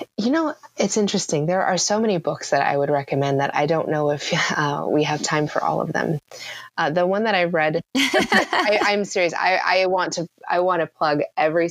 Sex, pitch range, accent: female, 140-185 Hz, American